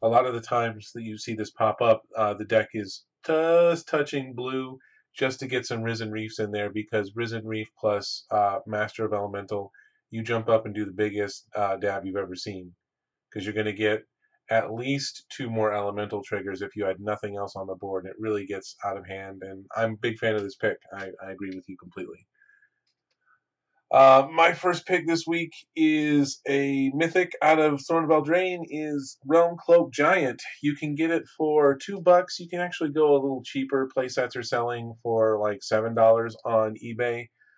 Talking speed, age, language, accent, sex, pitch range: 200 wpm, 30-49, English, American, male, 105-140 Hz